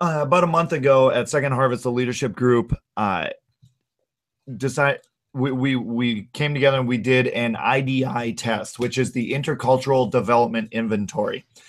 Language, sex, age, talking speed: English, male, 30-49, 155 wpm